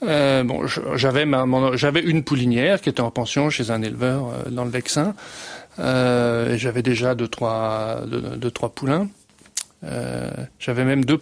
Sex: male